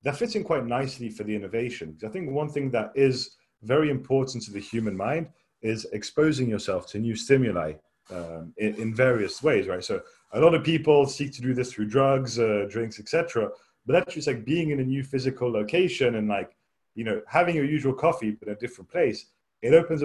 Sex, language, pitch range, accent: male, English, 110-145 Hz, British